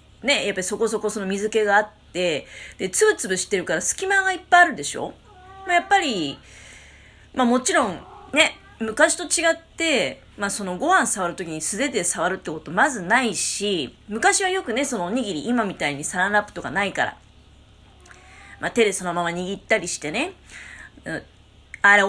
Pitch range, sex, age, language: 175-265 Hz, female, 30-49, Japanese